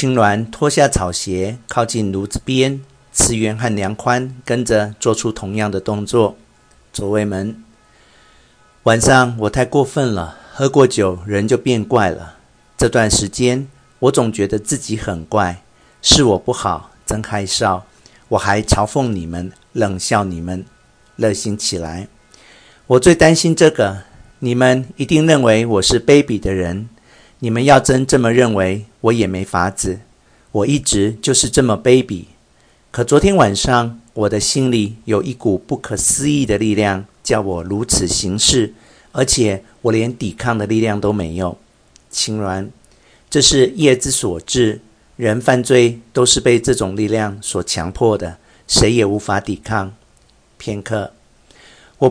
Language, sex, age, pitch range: Chinese, male, 50-69, 100-125 Hz